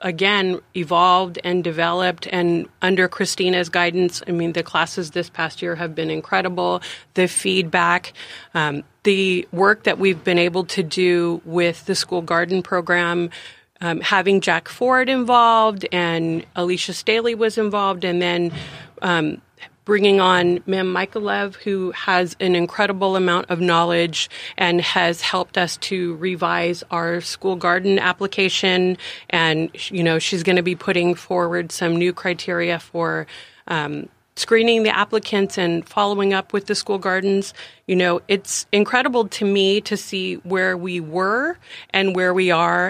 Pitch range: 175-200 Hz